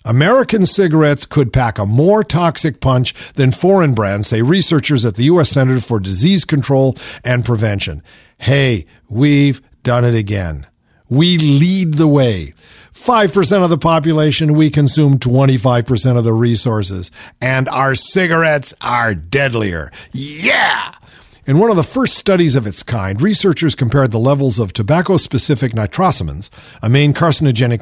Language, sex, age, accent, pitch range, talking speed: English, male, 50-69, American, 120-170 Hz, 145 wpm